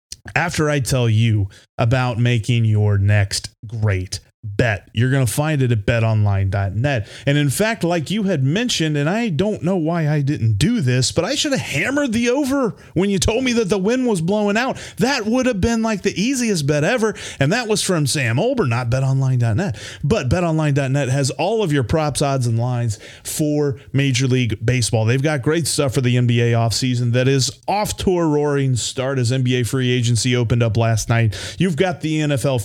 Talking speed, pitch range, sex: 200 wpm, 115-160 Hz, male